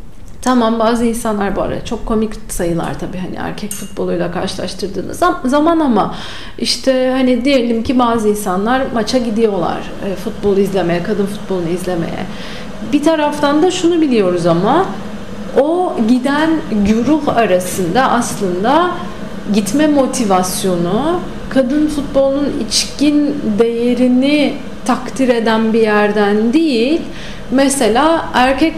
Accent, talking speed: native, 110 wpm